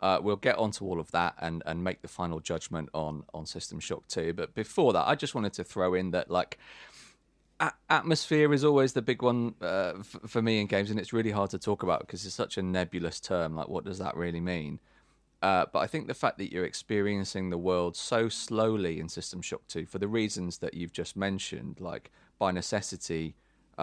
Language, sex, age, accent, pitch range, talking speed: English, male, 30-49, British, 90-110 Hz, 225 wpm